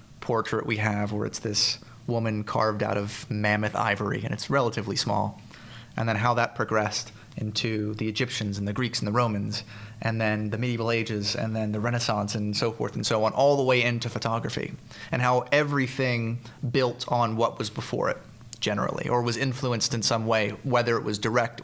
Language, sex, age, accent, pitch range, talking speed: English, male, 30-49, American, 110-125 Hz, 195 wpm